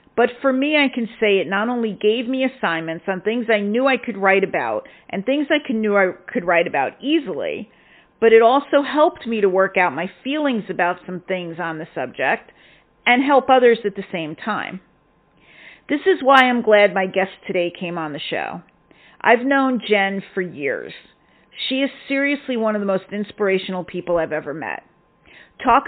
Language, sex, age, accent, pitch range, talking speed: English, female, 50-69, American, 190-255 Hz, 190 wpm